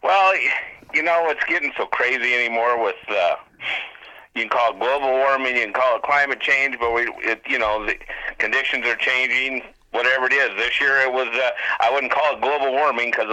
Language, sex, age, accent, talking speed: English, male, 50-69, American, 205 wpm